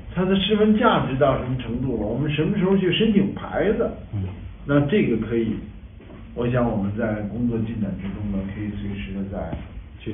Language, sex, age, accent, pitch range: Chinese, male, 50-69, native, 100-145 Hz